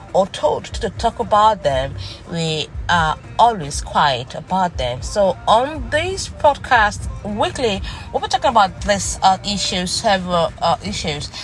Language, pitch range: English, 155-225 Hz